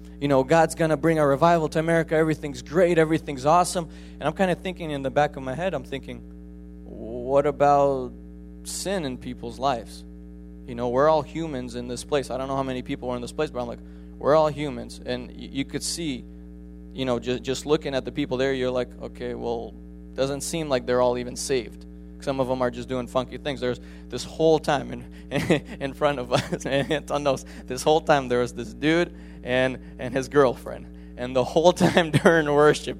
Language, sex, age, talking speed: English, male, 20-39, 215 wpm